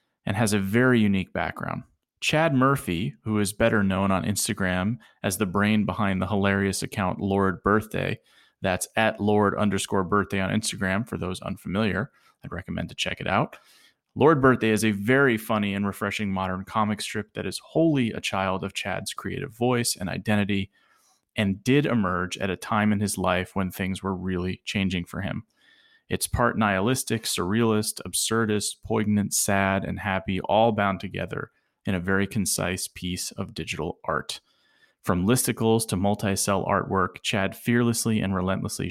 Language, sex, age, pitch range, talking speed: English, male, 30-49, 95-110 Hz, 165 wpm